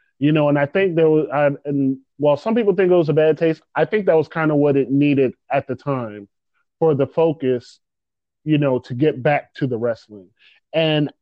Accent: American